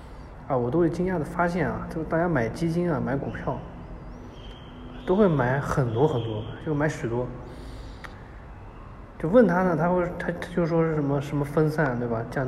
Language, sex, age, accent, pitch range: Chinese, male, 20-39, native, 125-155 Hz